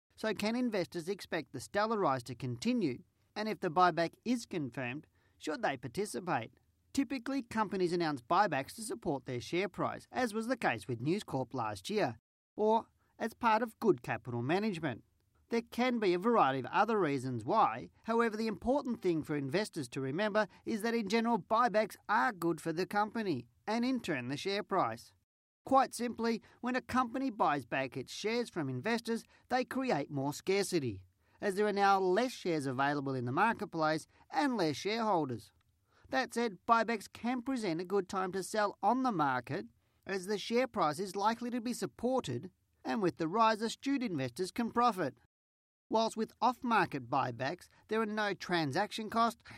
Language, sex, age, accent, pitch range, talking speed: English, male, 40-59, Australian, 155-230 Hz, 175 wpm